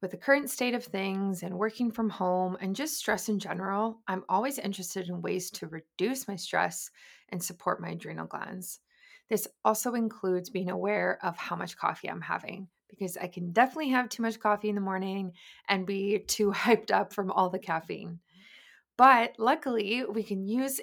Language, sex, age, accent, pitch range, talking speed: English, female, 20-39, American, 185-220 Hz, 185 wpm